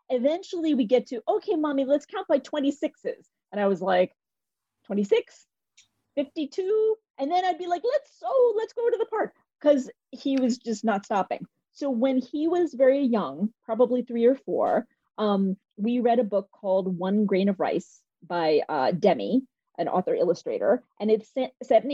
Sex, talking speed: female, 175 wpm